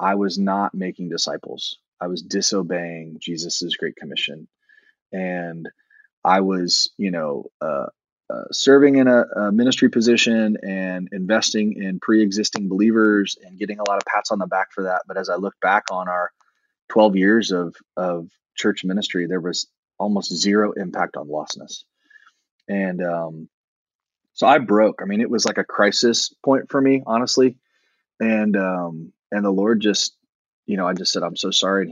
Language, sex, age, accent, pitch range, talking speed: English, male, 30-49, American, 90-110 Hz, 170 wpm